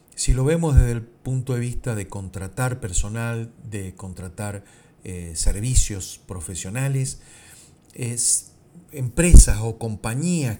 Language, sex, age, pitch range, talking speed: Spanish, male, 50-69, 100-130 Hz, 115 wpm